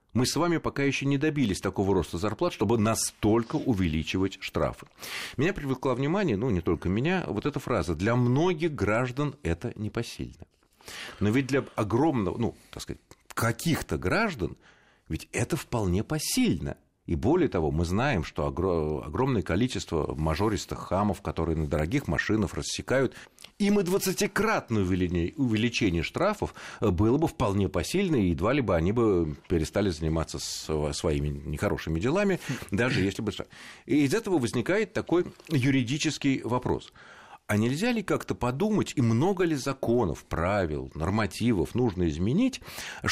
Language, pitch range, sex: Russian, 90-145 Hz, male